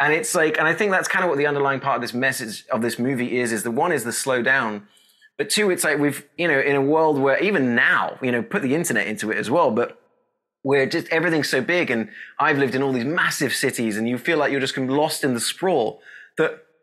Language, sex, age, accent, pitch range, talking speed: English, male, 20-39, British, 130-165 Hz, 270 wpm